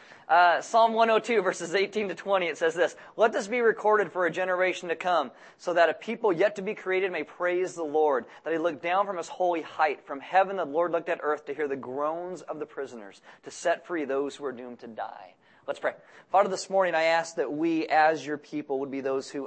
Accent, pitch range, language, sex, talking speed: American, 135-210 Hz, English, male, 240 wpm